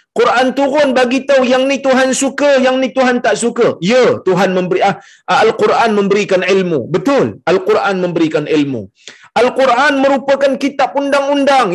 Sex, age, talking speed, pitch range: male, 50-69, 145 wpm, 195-275 Hz